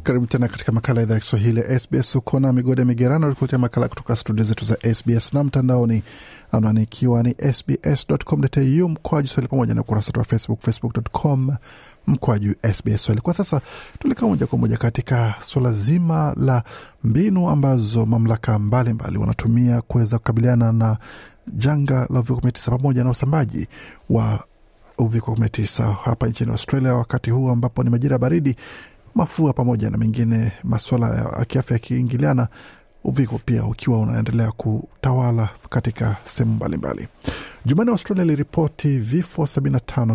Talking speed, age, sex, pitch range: 130 wpm, 50-69, male, 115-135 Hz